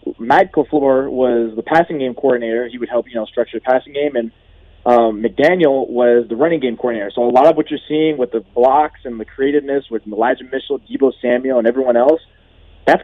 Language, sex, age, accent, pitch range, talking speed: English, male, 20-39, American, 120-155 Hz, 205 wpm